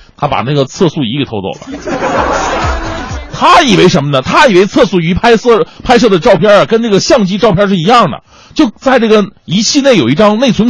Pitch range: 145-205 Hz